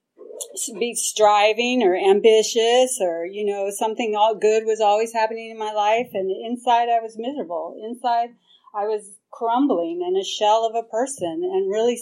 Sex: female